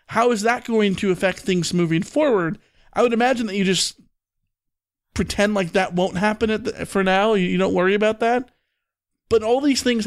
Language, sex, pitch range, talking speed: English, male, 175-210 Hz, 190 wpm